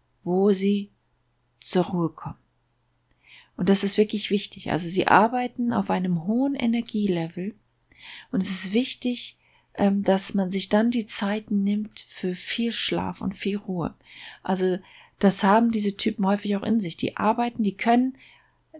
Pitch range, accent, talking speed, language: 180-225 Hz, German, 150 wpm, German